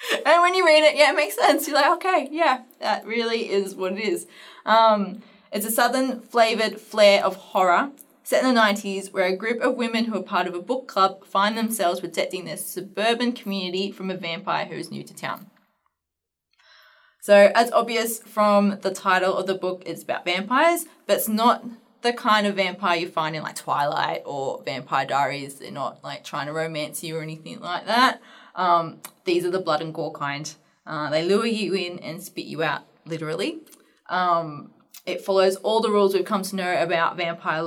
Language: English